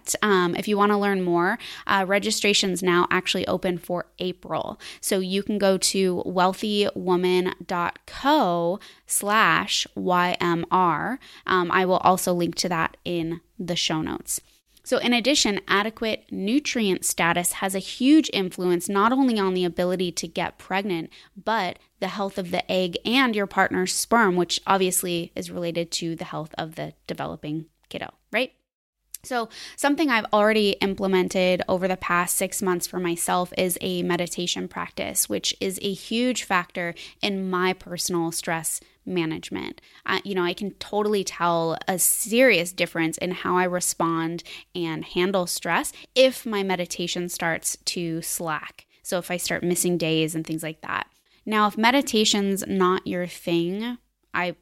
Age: 20-39